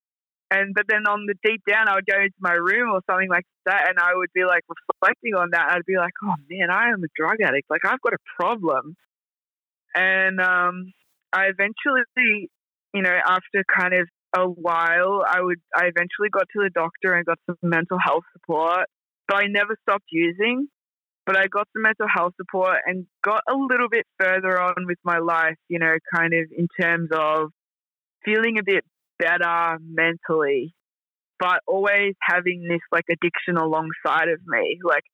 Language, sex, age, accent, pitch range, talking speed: English, female, 20-39, Australian, 170-205 Hz, 190 wpm